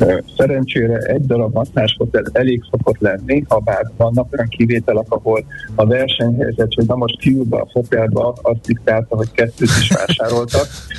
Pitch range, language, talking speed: 105-120 Hz, Hungarian, 145 wpm